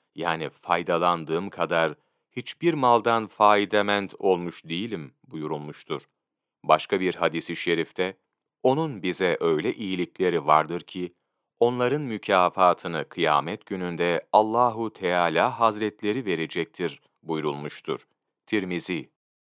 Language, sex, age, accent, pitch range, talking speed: Turkish, male, 40-59, native, 90-115 Hz, 90 wpm